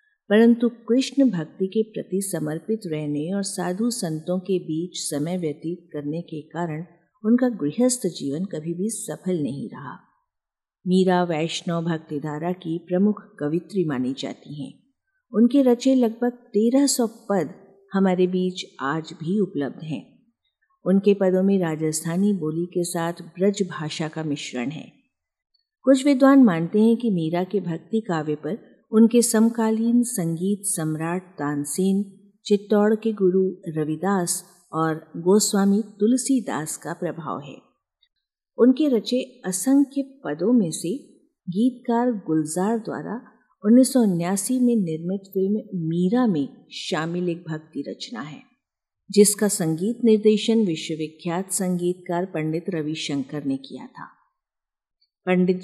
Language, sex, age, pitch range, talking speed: Hindi, female, 50-69, 165-225 Hz, 125 wpm